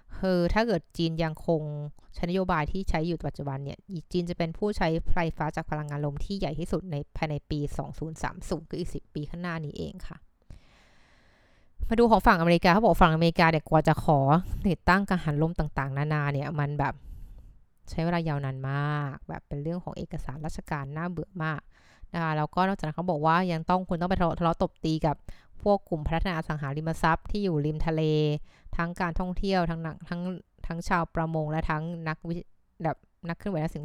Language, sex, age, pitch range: Thai, female, 20-39, 150-180 Hz